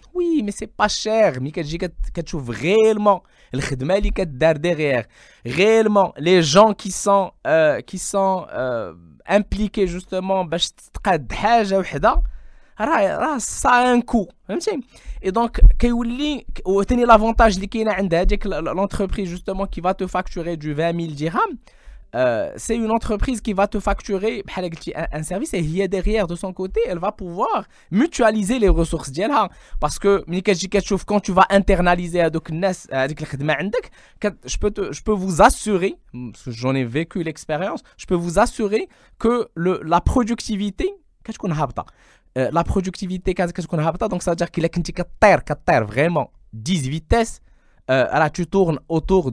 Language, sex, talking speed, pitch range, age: French, male, 135 wpm, 155-205 Hz, 20-39